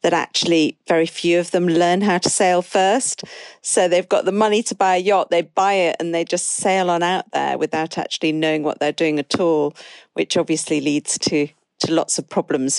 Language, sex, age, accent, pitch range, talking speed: English, female, 50-69, British, 165-210 Hz, 215 wpm